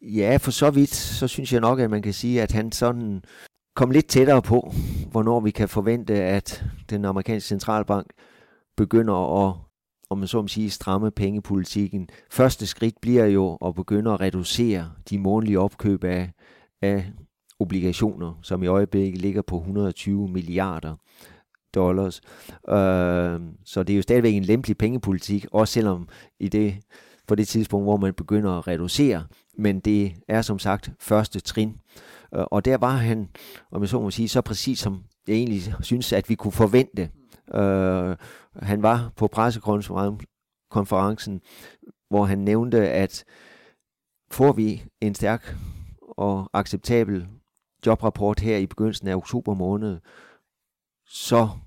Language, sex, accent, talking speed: Danish, male, native, 150 wpm